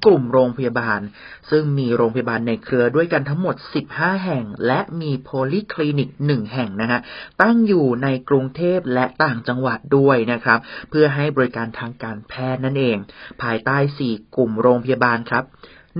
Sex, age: male, 30-49